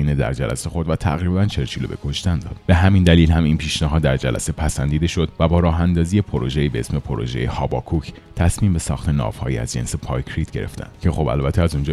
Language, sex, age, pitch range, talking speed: Persian, male, 30-49, 70-90 Hz, 210 wpm